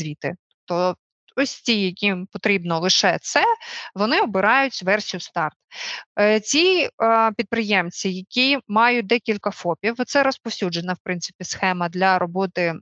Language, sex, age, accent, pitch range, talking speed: Ukrainian, female, 30-49, native, 185-240 Hz, 120 wpm